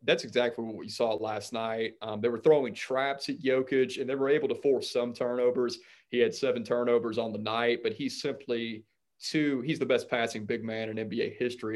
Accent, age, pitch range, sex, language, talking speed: American, 30-49, 115-130 Hz, male, English, 215 wpm